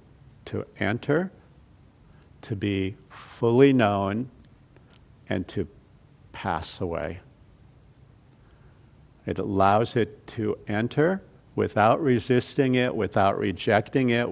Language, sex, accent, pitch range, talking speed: English, male, American, 105-130 Hz, 90 wpm